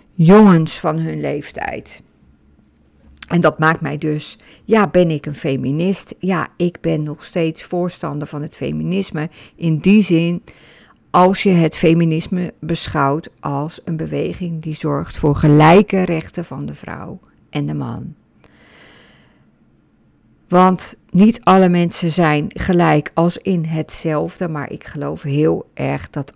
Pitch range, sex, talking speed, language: 150-190 Hz, female, 135 wpm, Dutch